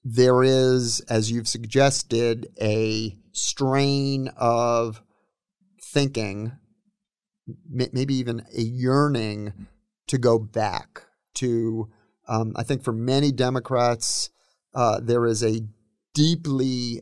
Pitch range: 115-135 Hz